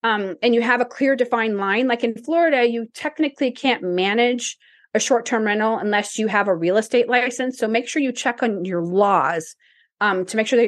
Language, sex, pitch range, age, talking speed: English, female, 220-285 Hz, 30-49, 215 wpm